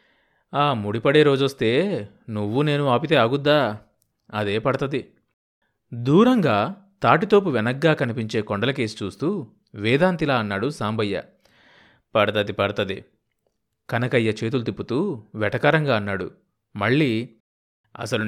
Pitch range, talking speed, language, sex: 105-150 Hz, 90 wpm, Telugu, male